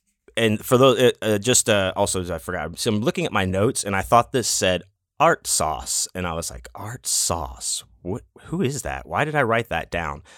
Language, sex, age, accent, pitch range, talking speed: English, male, 30-49, American, 85-110 Hz, 225 wpm